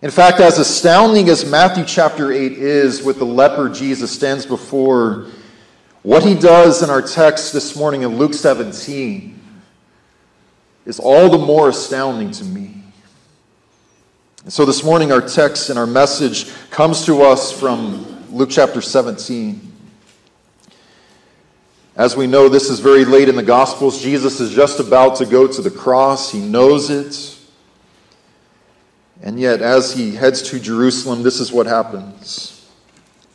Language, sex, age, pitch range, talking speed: English, male, 40-59, 130-170 Hz, 145 wpm